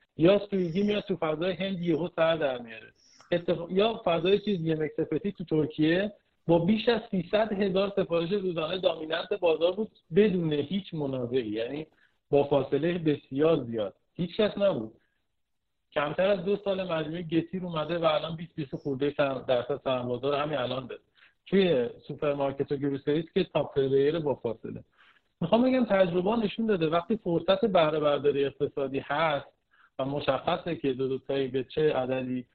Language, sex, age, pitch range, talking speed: Persian, male, 50-69, 140-185 Hz, 150 wpm